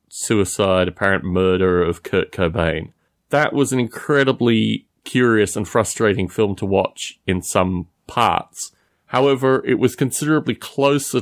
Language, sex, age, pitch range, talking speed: English, male, 30-49, 110-140 Hz, 130 wpm